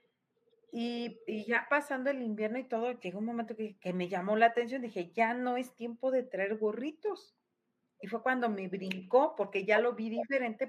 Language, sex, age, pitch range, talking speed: Spanish, female, 40-59, 175-230 Hz, 195 wpm